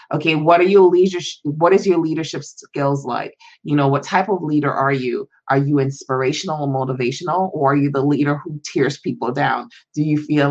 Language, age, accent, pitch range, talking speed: English, 30-49, American, 140-175 Hz, 205 wpm